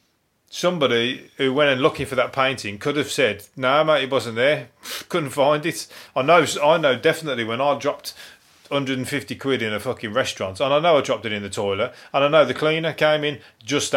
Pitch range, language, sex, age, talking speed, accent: 115-145 Hz, English, male, 30-49, 215 wpm, British